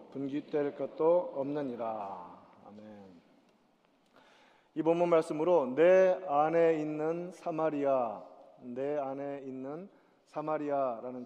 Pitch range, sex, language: 145-185 Hz, male, Korean